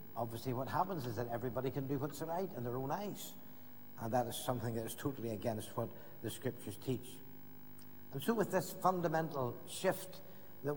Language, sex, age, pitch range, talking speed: English, male, 60-79, 115-145 Hz, 185 wpm